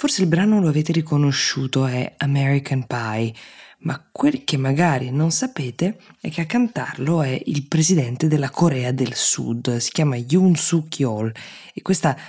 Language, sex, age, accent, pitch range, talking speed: Italian, female, 20-39, native, 125-155 Hz, 160 wpm